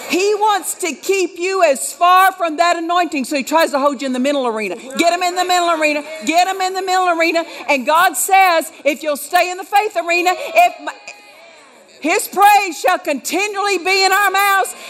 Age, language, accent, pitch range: 50-69, English, American, 265-360 Hz